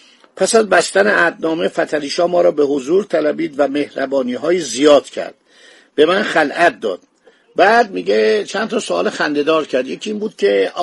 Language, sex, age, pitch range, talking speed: Persian, male, 50-69, 155-220 Hz, 165 wpm